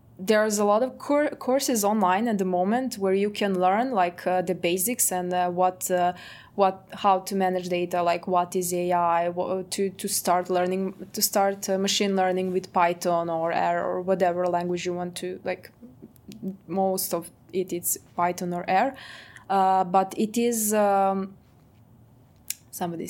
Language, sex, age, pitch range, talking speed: English, female, 20-39, 175-200 Hz, 170 wpm